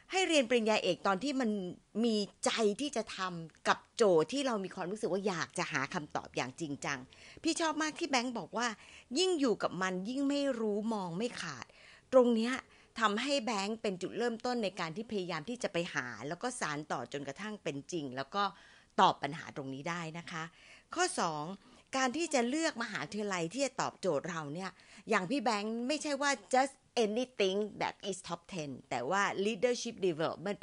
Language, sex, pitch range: Thai, female, 170-240 Hz